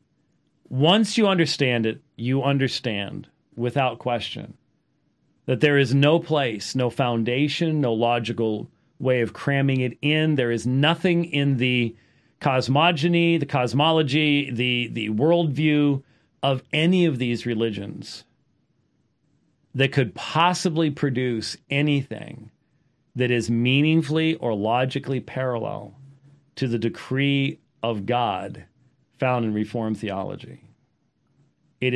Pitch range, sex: 115-145 Hz, male